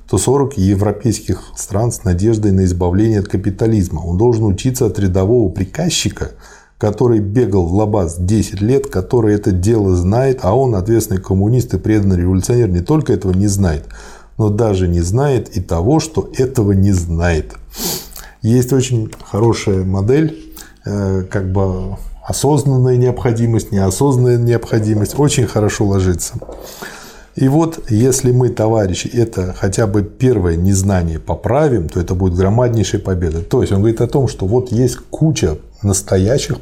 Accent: native